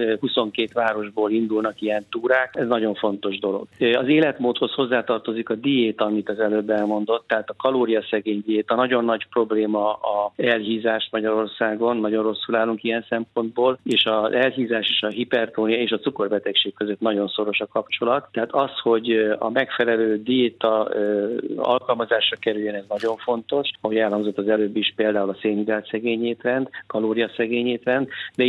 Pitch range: 105-115 Hz